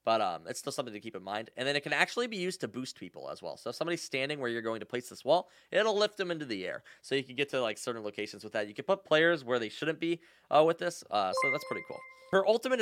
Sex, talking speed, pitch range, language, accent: male, 310 wpm, 120-175 Hz, English, American